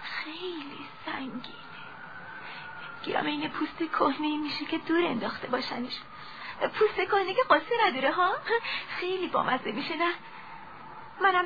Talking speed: 115 wpm